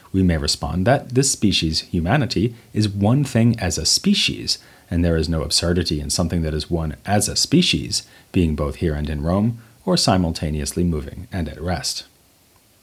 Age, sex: 30-49, male